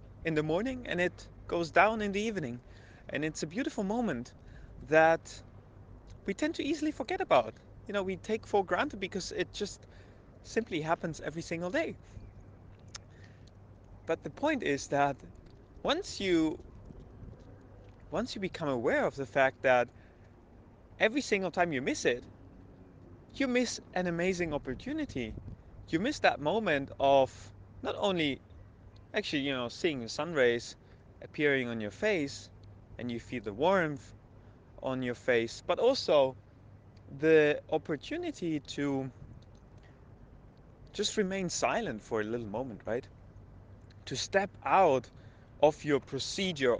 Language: English